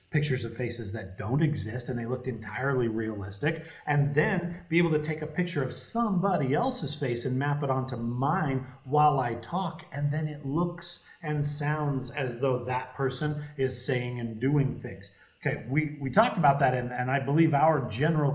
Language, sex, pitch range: English, male, 120-150 Hz